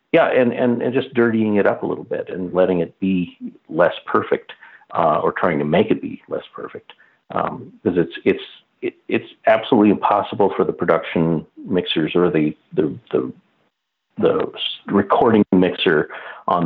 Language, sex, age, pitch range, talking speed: English, male, 50-69, 85-125 Hz, 165 wpm